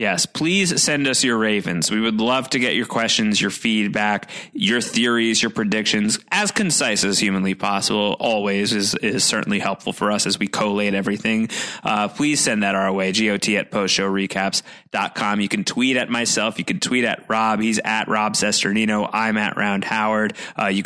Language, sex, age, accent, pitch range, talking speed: English, male, 20-39, American, 105-135 Hz, 185 wpm